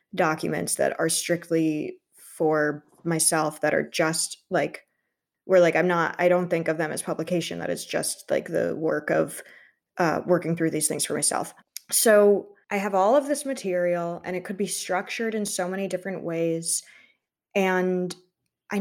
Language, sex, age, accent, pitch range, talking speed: English, female, 20-39, American, 165-195 Hz, 170 wpm